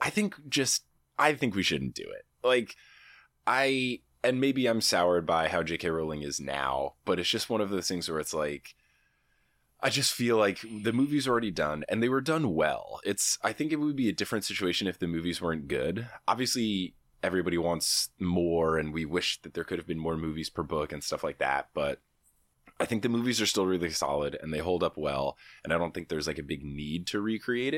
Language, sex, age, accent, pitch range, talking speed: Finnish, male, 20-39, American, 80-115 Hz, 225 wpm